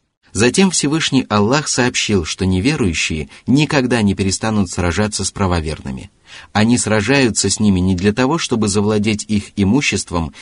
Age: 30-49